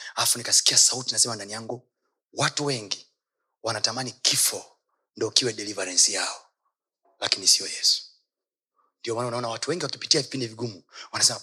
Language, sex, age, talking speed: Swahili, male, 30-49, 140 wpm